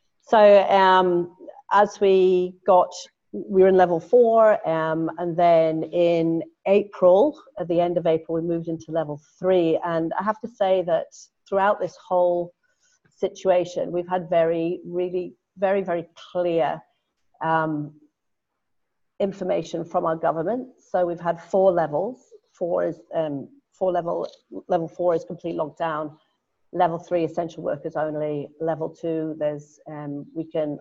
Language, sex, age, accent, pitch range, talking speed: English, female, 40-59, British, 160-185 Hz, 140 wpm